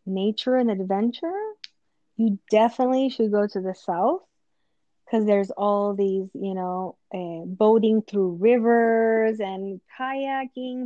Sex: female